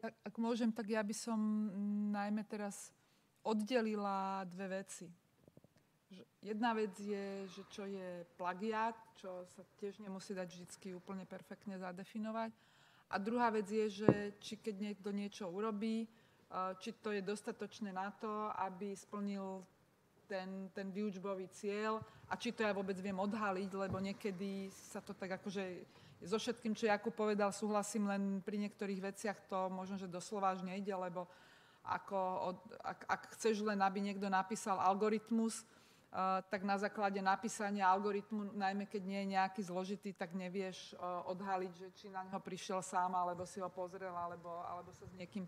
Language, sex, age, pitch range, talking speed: Slovak, female, 30-49, 190-215 Hz, 155 wpm